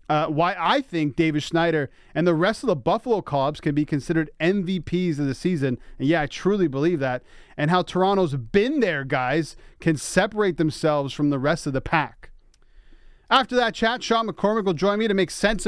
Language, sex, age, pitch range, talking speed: English, male, 30-49, 145-180 Hz, 200 wpm